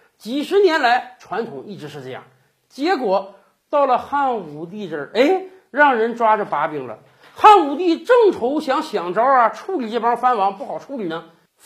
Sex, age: male, 50-69